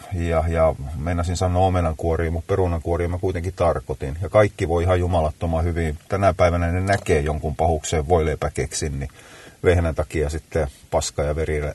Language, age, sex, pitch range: Finnish, 30-49, male, 80-100 Hz